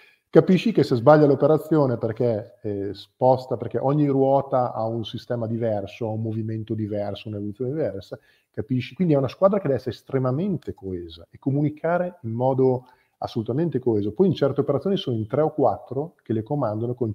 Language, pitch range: Italian, 115-140 Hz